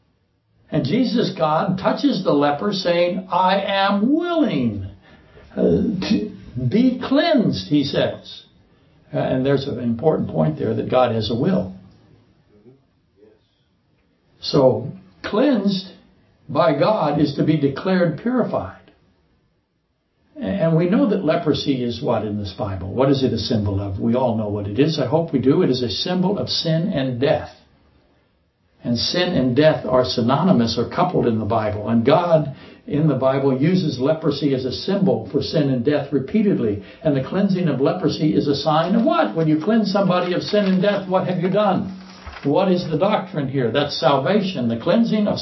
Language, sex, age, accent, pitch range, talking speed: English, male, 60-79, American, 130-185 Hz, 170 wpm